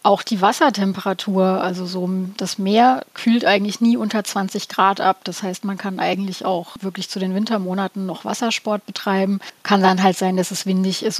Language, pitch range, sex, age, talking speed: German, 185-205 Hz, female, 30-49, 190 wpm